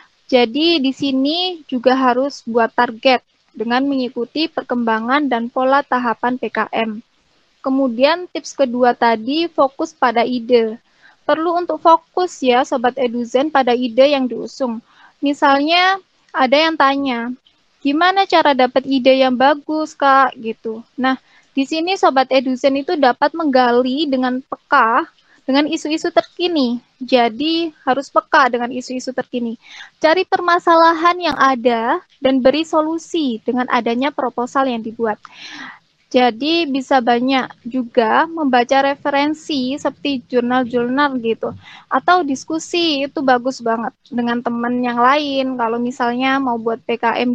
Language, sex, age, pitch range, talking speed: Indonesian, female, 20-39, 245-295 Hz, 125 wpm